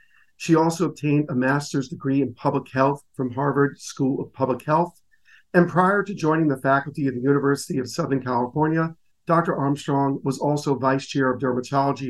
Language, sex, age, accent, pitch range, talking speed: English, male, 50-69, American, 130-155 Hz, 175 wpm